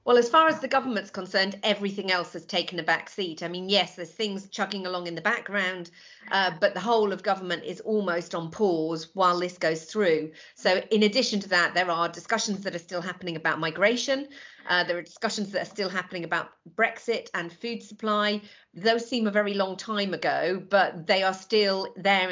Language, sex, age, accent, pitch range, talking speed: English, female, 40-59, British, 180-210 Hz, 205 wpm